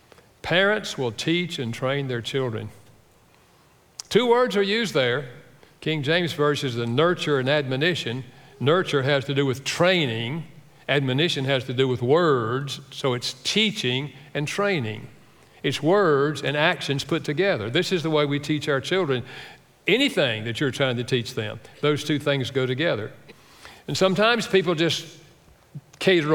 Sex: male